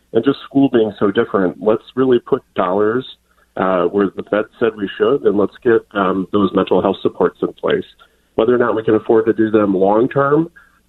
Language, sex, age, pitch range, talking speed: English, male, 40-59, 95-120 Hz, 210 wpm